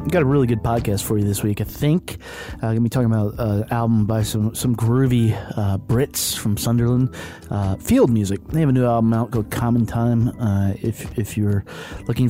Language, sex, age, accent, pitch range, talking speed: English, male, 30-49, American, 100-120 Hz, 220 wpm